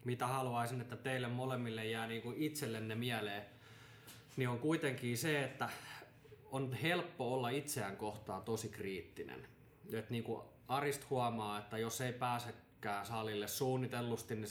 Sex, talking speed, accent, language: male, 130 wpm, native, Finnish